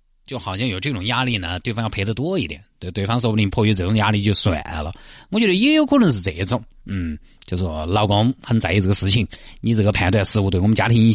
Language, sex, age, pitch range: Chinese, male, 30-49, 95-130 Hz